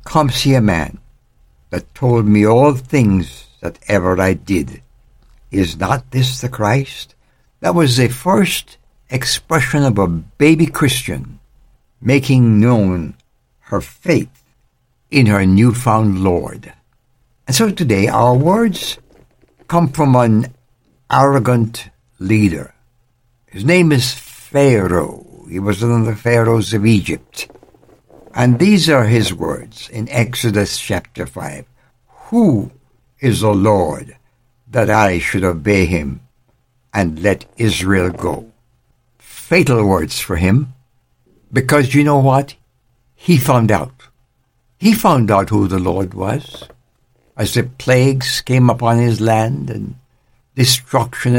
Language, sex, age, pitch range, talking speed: English, male, 60-79, 105-130 Hz, 125 wpm